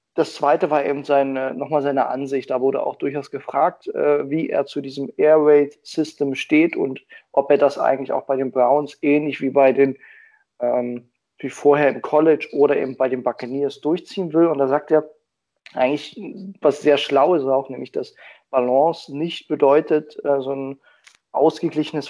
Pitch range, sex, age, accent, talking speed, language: 135-155 Hz, male, 20-39, German, 175 wpm, German